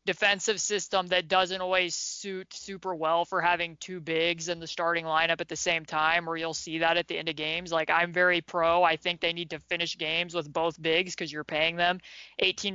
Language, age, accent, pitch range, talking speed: English, 20-39, American, 160-180 Hz, 225 wpm